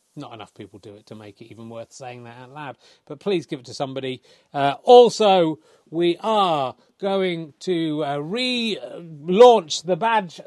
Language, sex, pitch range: English, male, 135-180 Hz